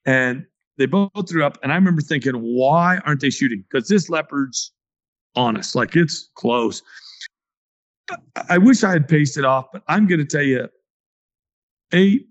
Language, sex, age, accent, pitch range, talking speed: English, male, 40-59, American, 135-180 Hz, 170 wpm